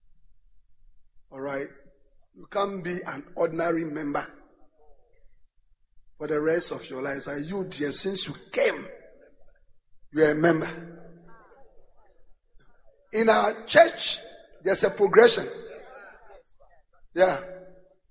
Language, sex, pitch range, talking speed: English, male, 145-210 Hz, 100 wpm